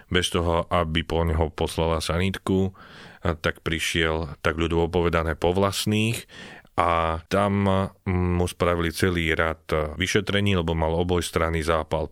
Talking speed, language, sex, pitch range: 125 wpm, Slovak, male, 85-95 Hz